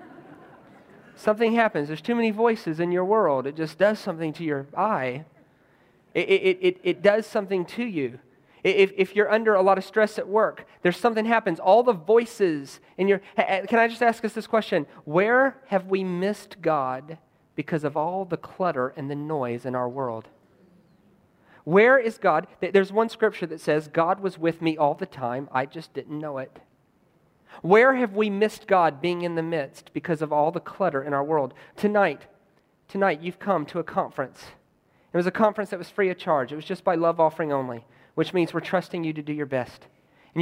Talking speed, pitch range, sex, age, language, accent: 200 wpm, 145-195 Hz, male, 40-59, English, American